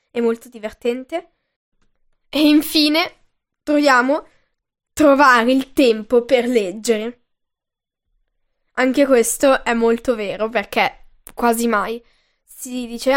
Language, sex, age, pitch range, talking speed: Italian, female, 10-29, 235-300 Hz, 95 wpm